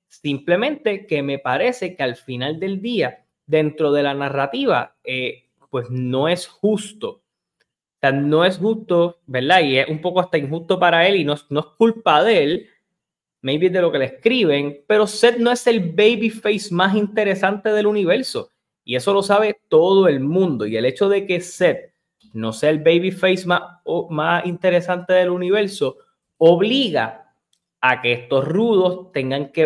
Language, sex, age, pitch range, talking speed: Spanish, male, 20-39, 140-195 Hz, 170 wpm